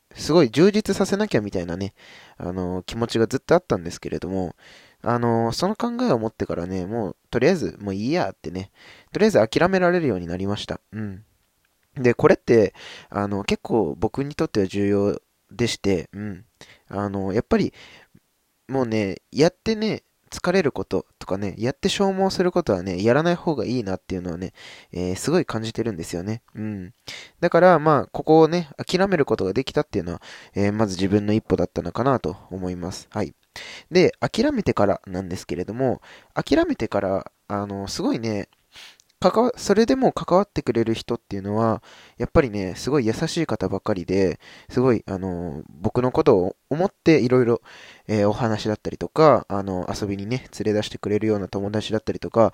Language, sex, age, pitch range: Japanese, male, 20-39, 95-145 Hz